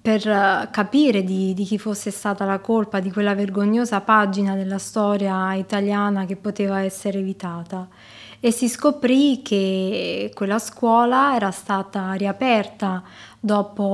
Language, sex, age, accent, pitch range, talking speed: Italian, female, 20-39, native, 195-215 Hz, 130 wpm